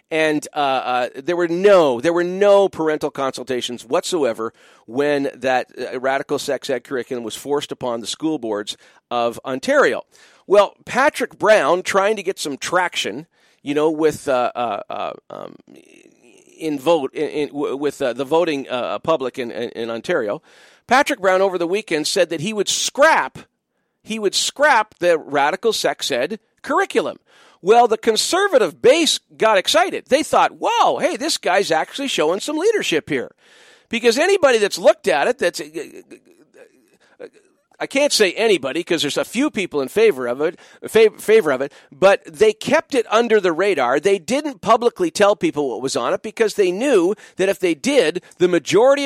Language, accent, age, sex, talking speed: English, American, 40-59, male, 165 wpm